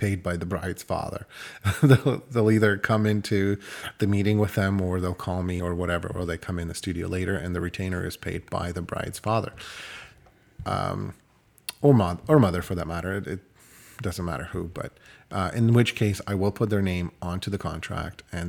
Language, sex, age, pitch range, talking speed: English, male, 30-49, 90-110 Hz, 205 wpm